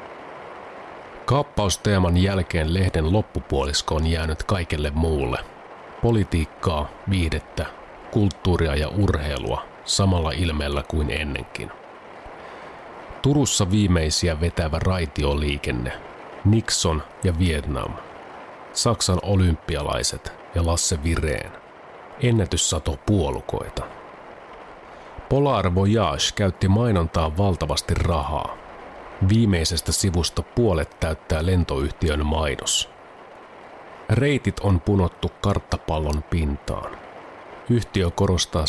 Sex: male